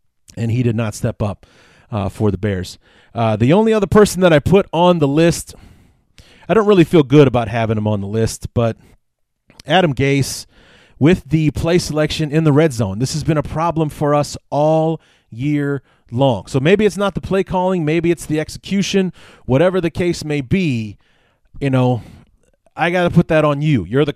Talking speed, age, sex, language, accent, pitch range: 200 wpm, 30-49, male, English, American, 115-155 Hz